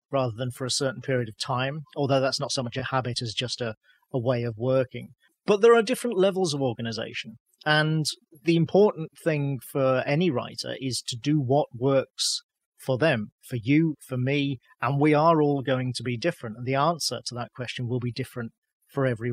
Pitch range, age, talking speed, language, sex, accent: 125-145 Hz, 40-59, 205 wpm, English, male, British